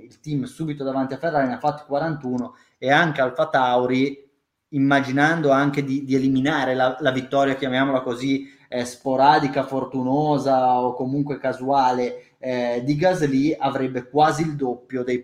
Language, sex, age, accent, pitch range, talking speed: Italian, male, 20-39, native, 125-145 Hz, 150 wpm